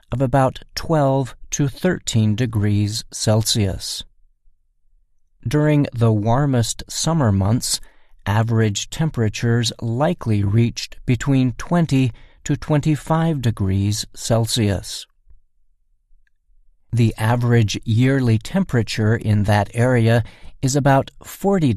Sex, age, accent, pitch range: male, 50-69, American, 100-135 Hz